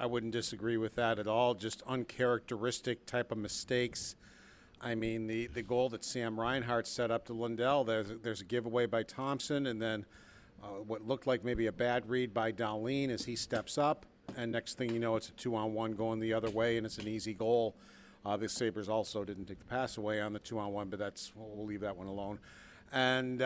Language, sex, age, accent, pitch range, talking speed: English, male, 50-69, American, 110-125 Hz, 215 wpm